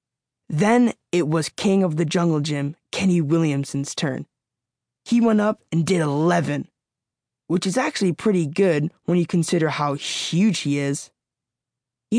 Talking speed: 150 wpm